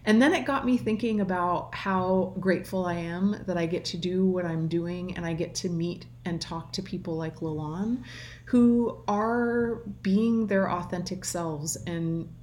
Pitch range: 170-205 Hz